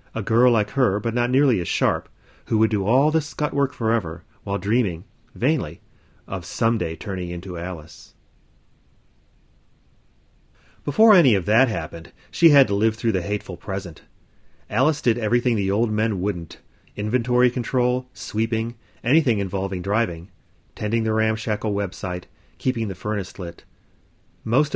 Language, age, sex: English, 30-49, male